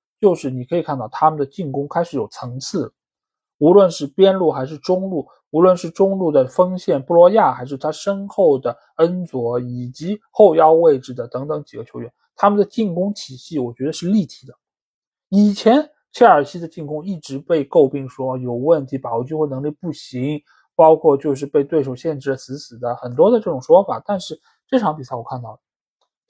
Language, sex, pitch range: Chinese, male, 130-195 Hz